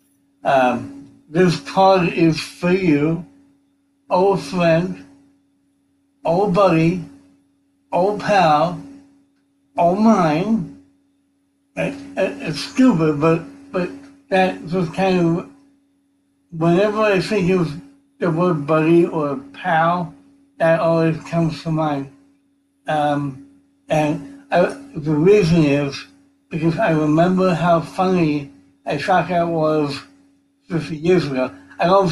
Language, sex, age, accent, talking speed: English, male, 60-79, American, 105 wpm